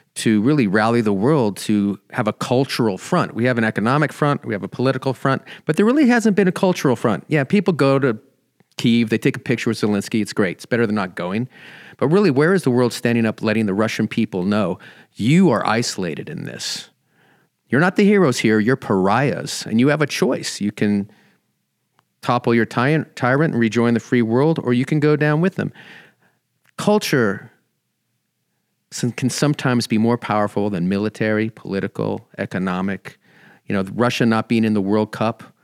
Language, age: English, 40-59